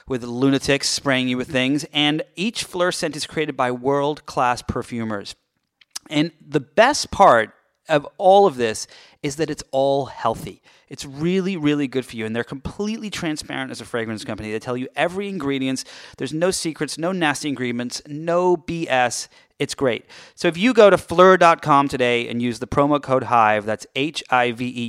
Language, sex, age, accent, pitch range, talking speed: English, male, 30-49, American, 125-155 Hz, 175 wpm